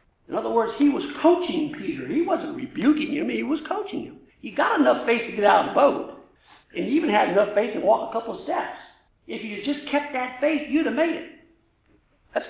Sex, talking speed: male, 230 wpm